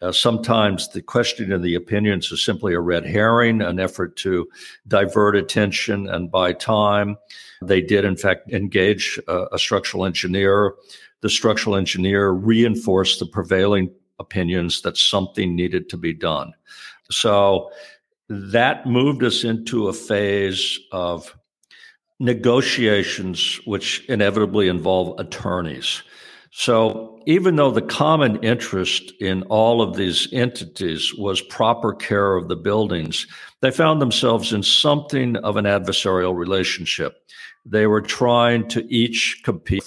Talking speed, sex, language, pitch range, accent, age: 130 wpm, male, English, 95-120 Hz, American, 50-69